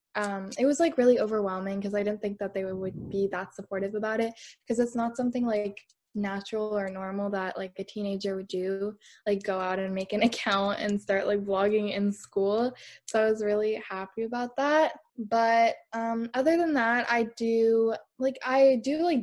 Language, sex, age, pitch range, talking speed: English, female, 10-29, 195-225 Hz, 195 wpm